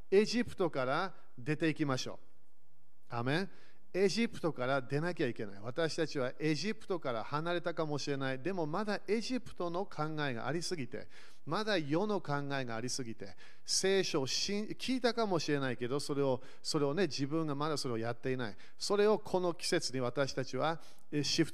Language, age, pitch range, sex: Japanese, 40-59, 135-175 Hz, male